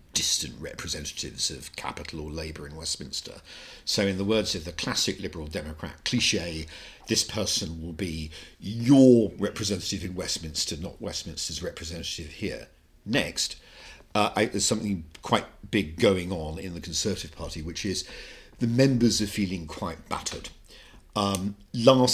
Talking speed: 140 wpm